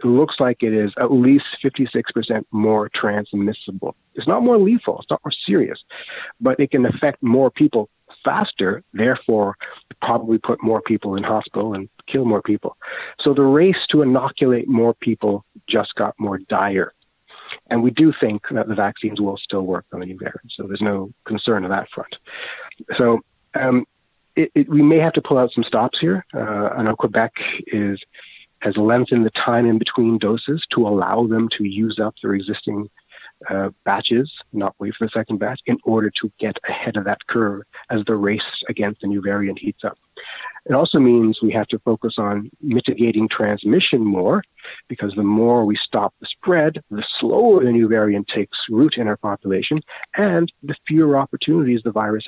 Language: English